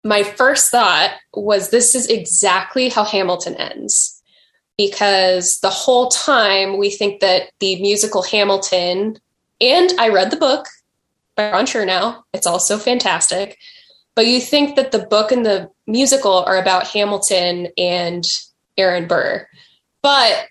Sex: female